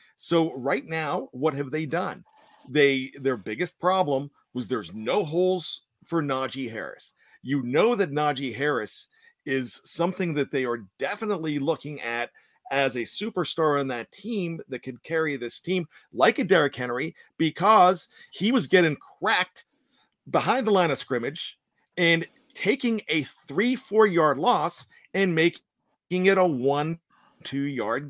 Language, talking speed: English, 145 wpm